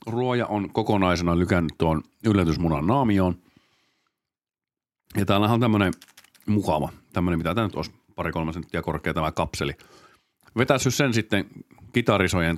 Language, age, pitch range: Finnish, 50-69, 90-125 Hz